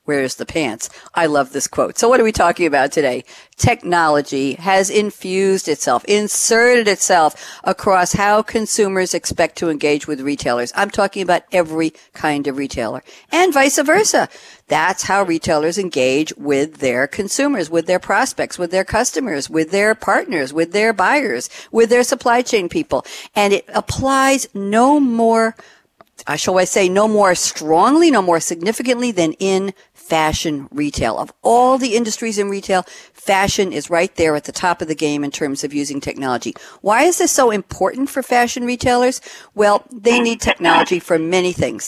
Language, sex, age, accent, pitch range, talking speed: English, female, 60-79, American, 165-230 Hz, 170 wpm